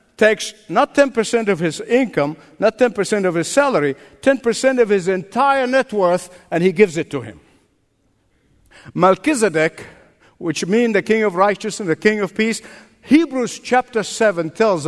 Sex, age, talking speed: male, 60-79, 155 wpm